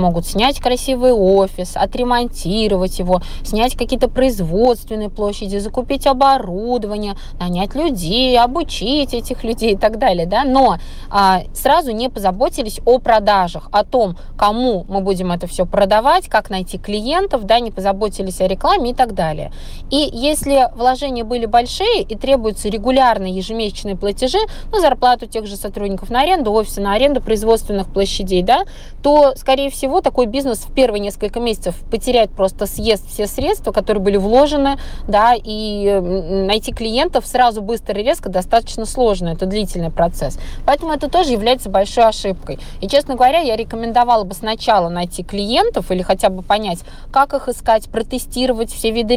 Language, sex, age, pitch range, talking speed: Russian, female, 20-39, 195-250 Hz, 155 wpm